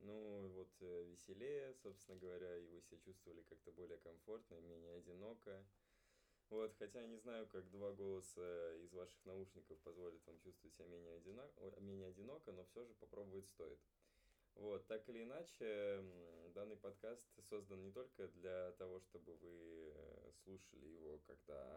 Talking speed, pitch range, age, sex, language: 145 wpm, 90-100 Hz, 20-39, male, Russian